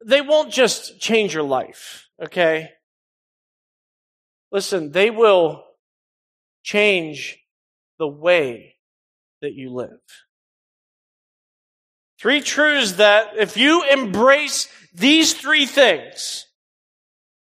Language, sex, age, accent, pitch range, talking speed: English, male, 40-59, American, 160-220 Hz, 85 wpm